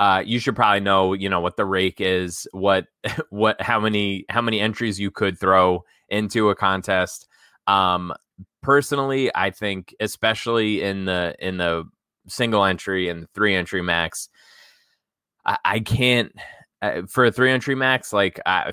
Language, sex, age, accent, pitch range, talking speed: English, male, 20-39, American, 95-110 Hz, 160 wpm